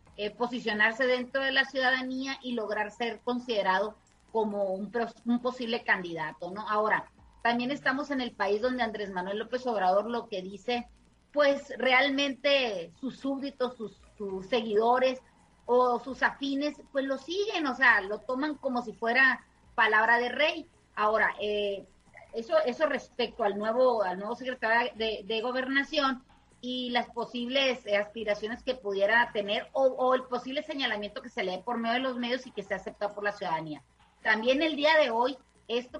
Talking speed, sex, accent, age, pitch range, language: 165 wpm, female, Mexican, 30-49, 210-260 Hz, Spanish